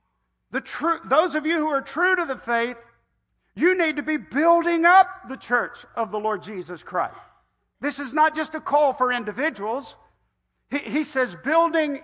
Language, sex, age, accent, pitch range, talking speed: English, male, 50-69, American, 210-295 Hz, 170 wpm